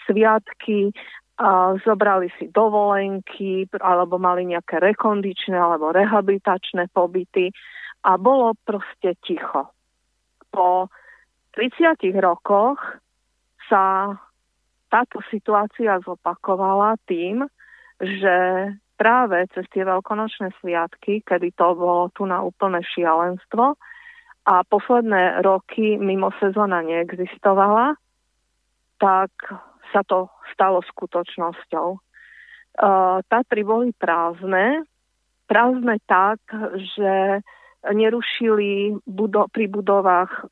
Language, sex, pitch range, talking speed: English, female, 185-220 Hz, 85 wpm